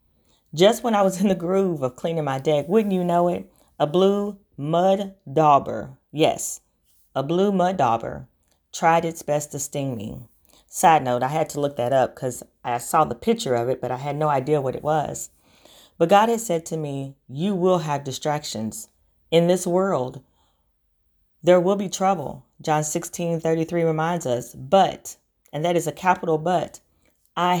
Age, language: 40-59, English